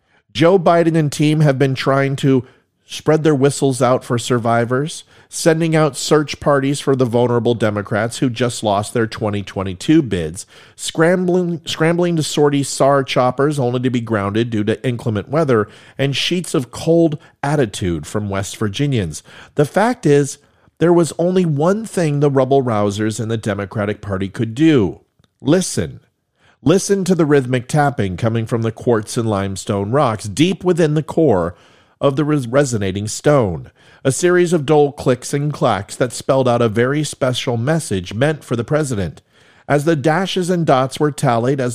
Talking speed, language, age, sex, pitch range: 165 wpm, English, 40-59, male, 110-150 Hz